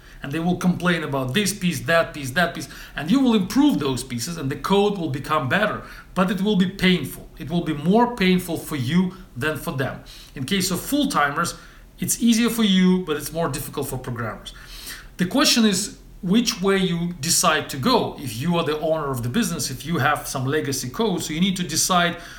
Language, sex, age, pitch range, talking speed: English, male, 40-59, 140-190 Hz, 215 wpm